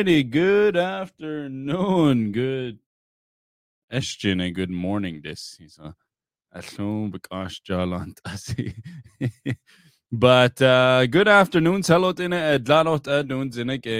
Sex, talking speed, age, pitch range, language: male, 105 wpm, 20-39, 90-115 Hz, English